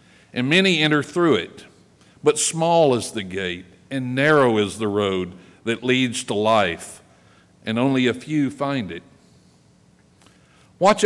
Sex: male